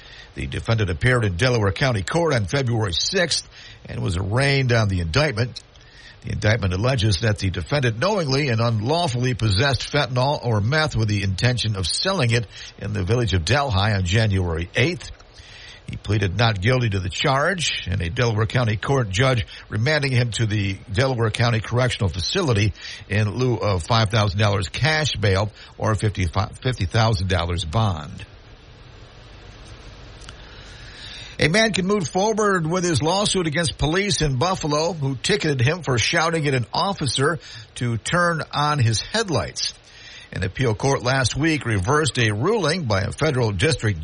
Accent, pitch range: American, 105-135 Hz